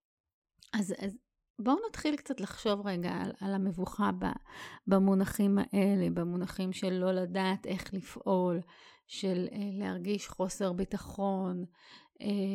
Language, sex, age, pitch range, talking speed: English, female, 30-49, 190-220 Hz, 105 wpm